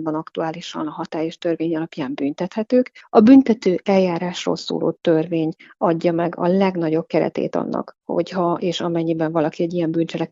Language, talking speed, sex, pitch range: Hungarian, 140 wpm, female, 165-195 Hz